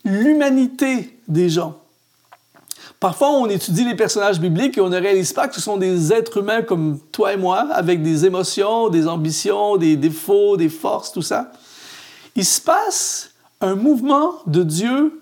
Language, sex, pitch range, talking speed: French, male, 195-285 Hz, 165 wpm